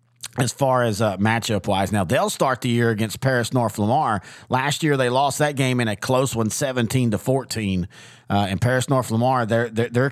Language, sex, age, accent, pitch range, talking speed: English, male, 40-59, American, 110-130 Hz, 190 wpm